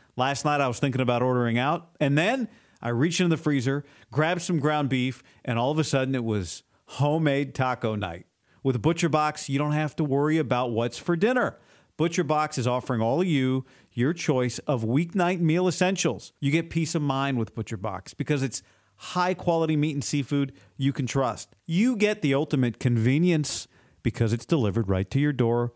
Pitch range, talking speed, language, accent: 125-165 Hz, 185 wpm, English, American